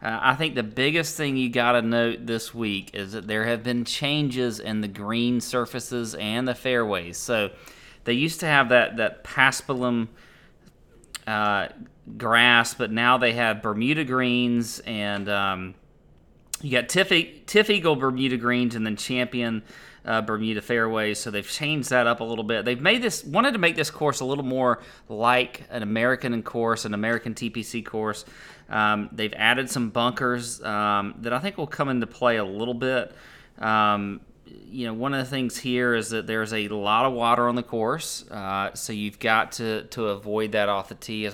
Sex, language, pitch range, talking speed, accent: male, English, 110-130 Hz, 185 wpm, American